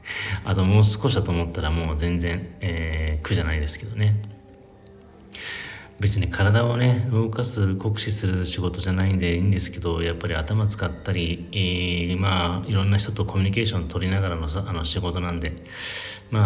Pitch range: 85-105 Hz